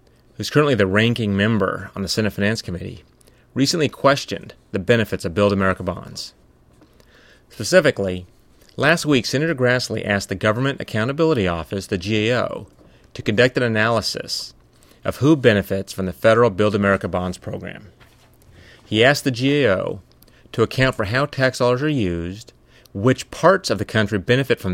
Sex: male